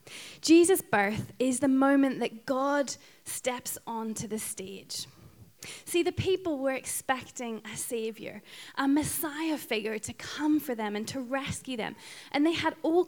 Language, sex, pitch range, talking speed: English, female, 220-275 Hz, 150 wpm